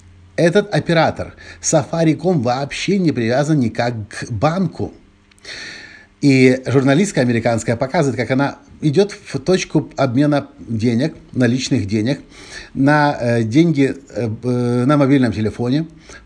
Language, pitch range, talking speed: Russian, 110-160 Hz, 110 wpm